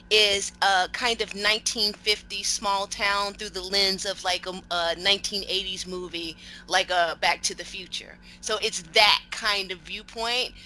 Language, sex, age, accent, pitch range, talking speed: English, female, 30-49, American, 190-235 Hz, 160 wpm